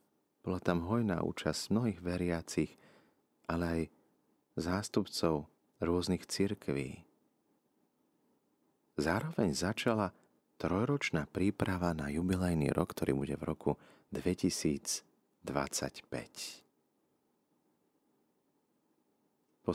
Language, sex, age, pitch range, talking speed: Slovak, male, 30-49, 75-90 Hz, 75 wpm